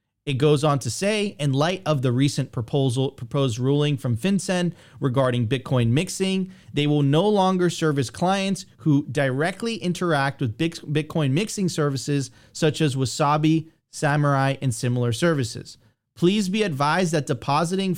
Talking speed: 145 wpm